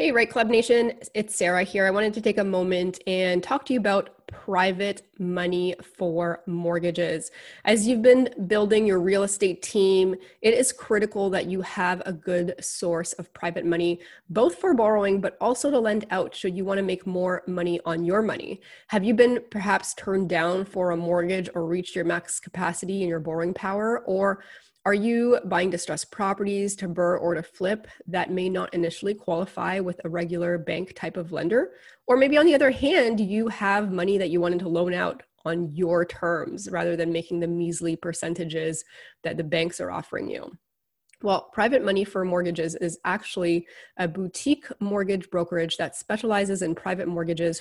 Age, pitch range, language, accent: 20-39, 175-205 Hz, English, American